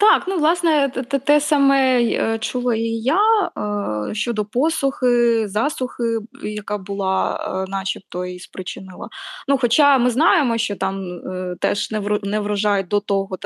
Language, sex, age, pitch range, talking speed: Ukrainian, female, 20-39, 195-250 Hz, 125 wpm